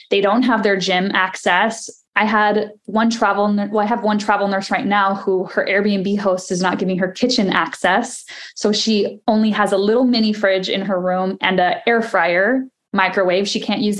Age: 10-29